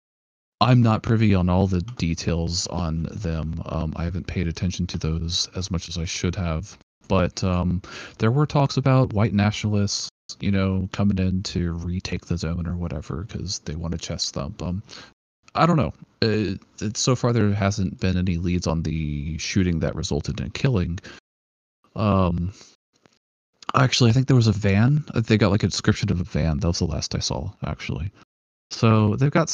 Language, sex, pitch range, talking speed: English, male, 85-105 Hz, 190 wpm